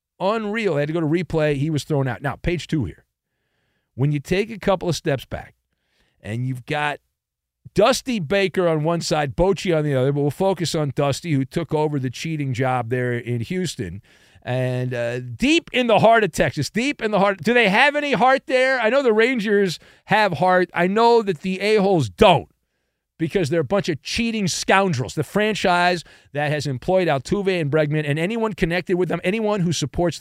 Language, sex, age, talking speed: English, male, 40-59, 205 wpm